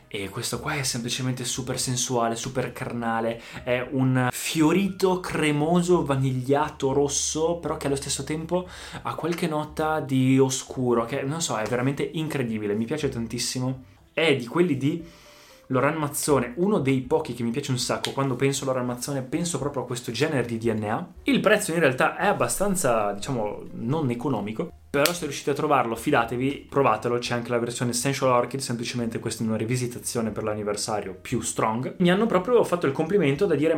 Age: 20-39